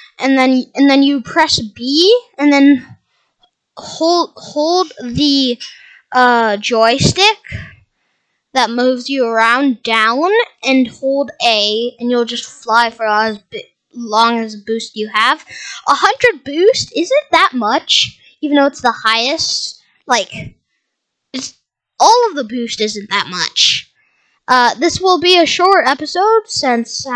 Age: 10-29